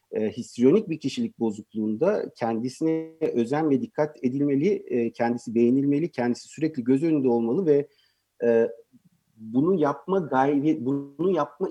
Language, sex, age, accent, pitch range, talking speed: Turkish, male, 50-69, native, 125-165 Hz, 130 wpm